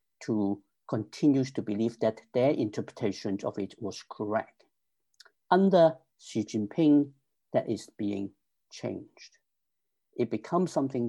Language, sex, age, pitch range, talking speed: English, male, 50-69, 110-150 Hz, 115 wpm